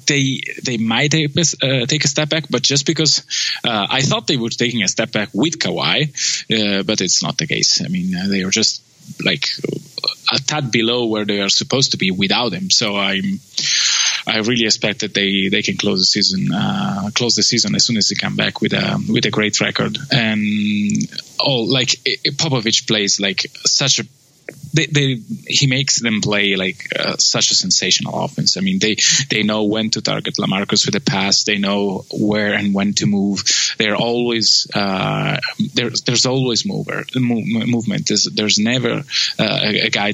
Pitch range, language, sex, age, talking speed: 105-150 Hz, English, male, 20-39, 195 wpm